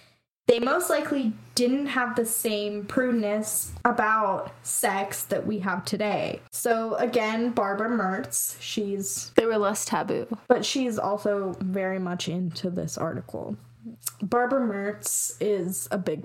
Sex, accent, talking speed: female, American, 135 wpm